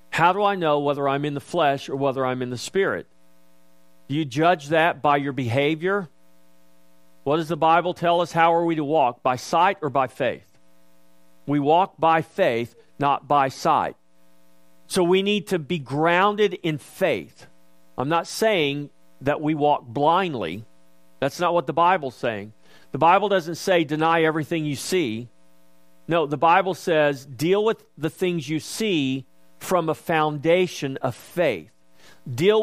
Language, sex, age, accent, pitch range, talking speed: English, male, 50-69, American, 130-170 Hz, 165 wpm